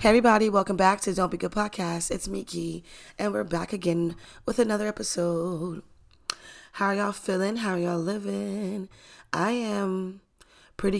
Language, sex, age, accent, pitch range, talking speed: English, female, 20-39, American, 155-195 Hz, 160 wpm